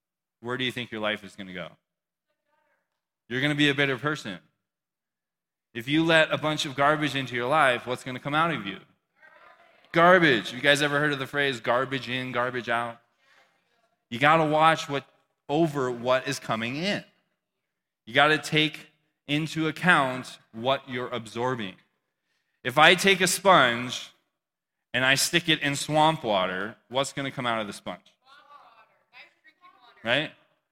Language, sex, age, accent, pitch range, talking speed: English, male, 20-39, American, 120-160 Hz, 165 wpm